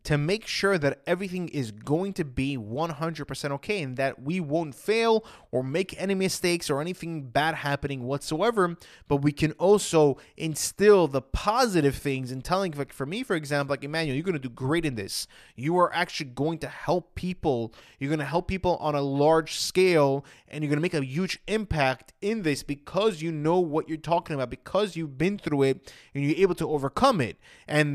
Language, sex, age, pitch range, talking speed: English, male, 20-39, 140-185 Hz, 200 wpm